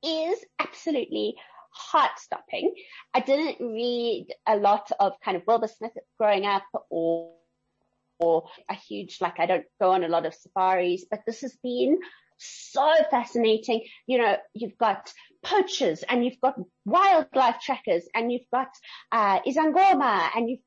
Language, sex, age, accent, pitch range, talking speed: English, female, 30-49, British, 185-300 Hz, 150 wpm